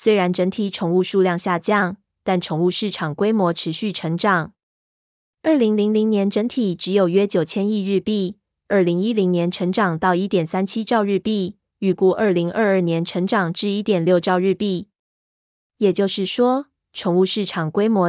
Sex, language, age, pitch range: female, Chinese, 20-39, 175-210 Hz